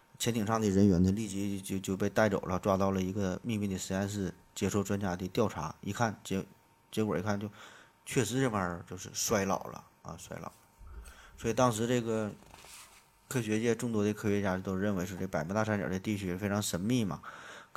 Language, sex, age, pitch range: Chinese, male, 20-39, 95-110 Hz